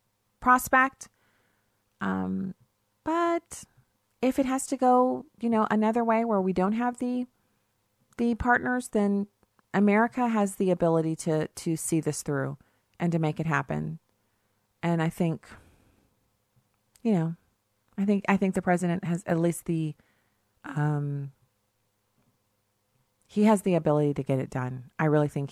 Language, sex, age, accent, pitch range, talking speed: English, female, 30-49, American, 125-195 Hz, 145 wpm